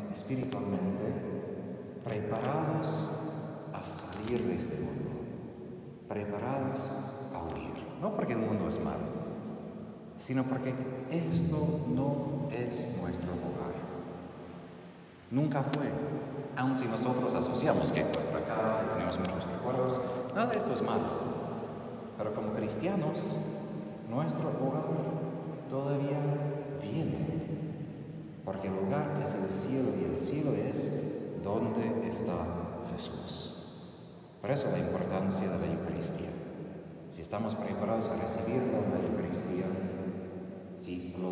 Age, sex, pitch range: 40-59, male, 90-140 Hz